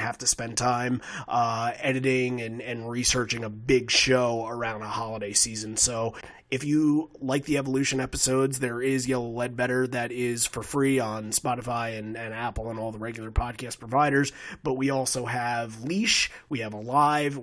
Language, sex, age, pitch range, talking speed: English, male, 30-49, 120-140 Hz, 180 wpm